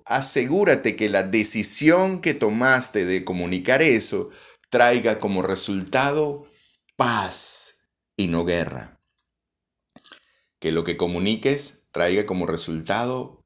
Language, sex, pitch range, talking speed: Spanish, male, 85-120 Hz, 105 wpm